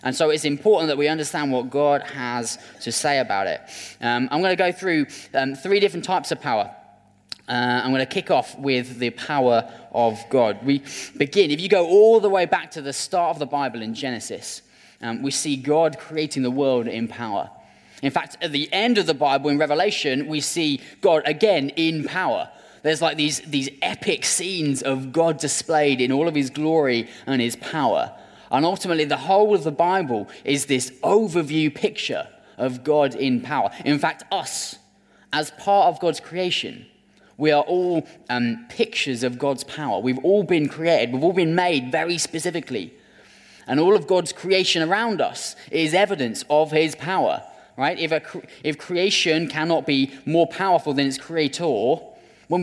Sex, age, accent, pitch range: male, 20-39, British, 135-175 Hz